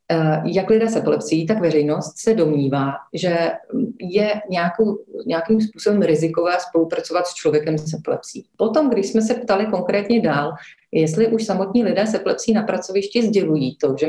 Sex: female